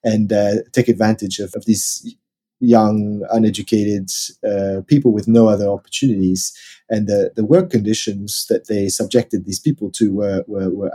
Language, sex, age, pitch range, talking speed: English, male, 30-49, 100-120 Hz, 155 wpm